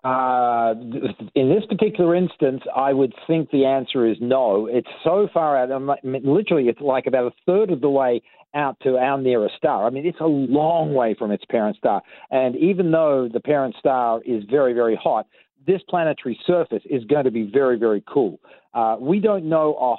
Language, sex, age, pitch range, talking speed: English, male, 50-69, 115-145 Hz, 195 wpm